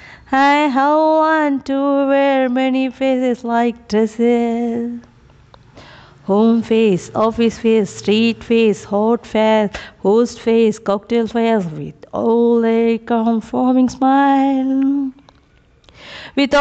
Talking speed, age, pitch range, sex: 105 wpm, 30-49, 225-270 Hz, female